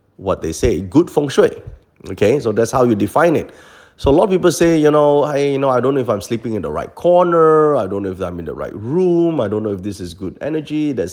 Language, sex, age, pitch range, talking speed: English, male, 30-49, 105-150 Hz, 285 wpm